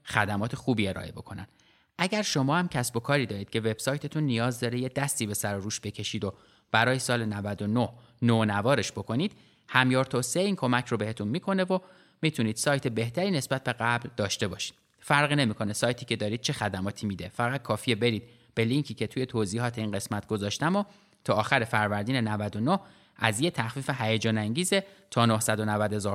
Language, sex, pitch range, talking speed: Persian, male, 110-145 Hz, 170 wpm